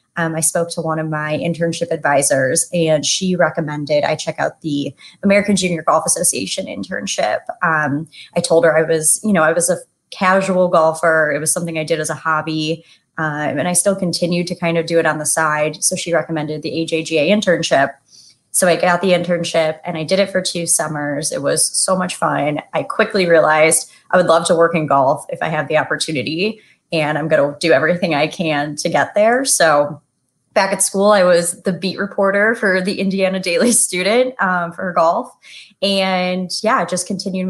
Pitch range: 155-180 Hz